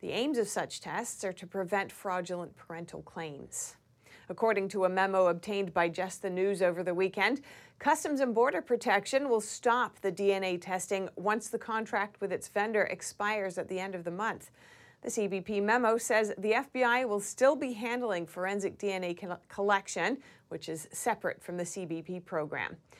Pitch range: 185-225 Hz